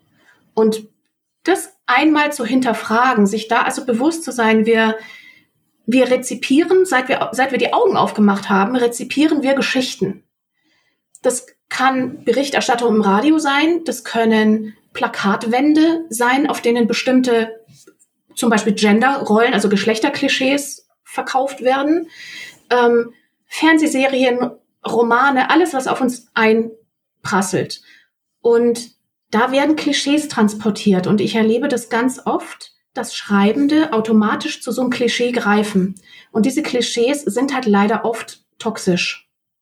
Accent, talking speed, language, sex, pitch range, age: German, 120 wpm, German, female, 220-285 Hz, 30-49